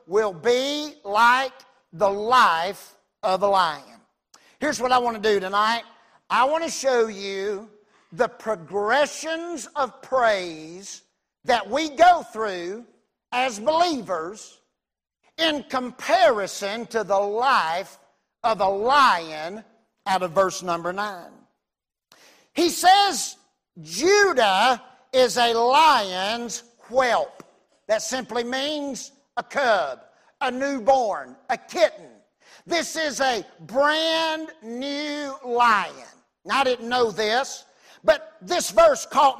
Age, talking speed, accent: 50-69, 110 wpm, American